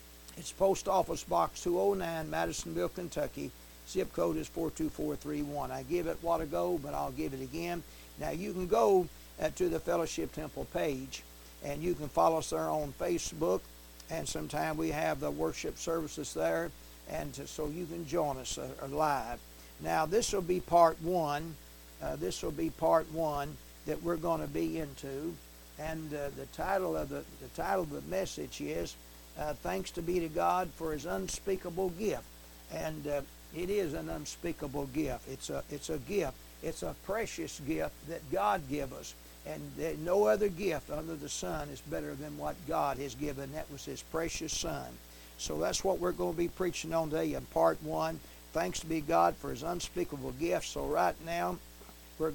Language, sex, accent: English, male, American